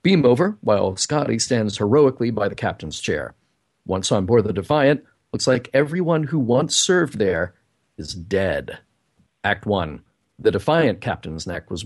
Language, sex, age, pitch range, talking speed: English, male, 40-59, 100-130 Hz, 155 wpm